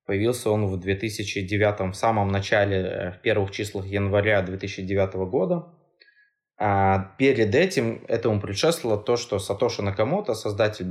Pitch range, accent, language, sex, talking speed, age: 100-130 Hz, native, Russian, male, 120 wpm, 20-39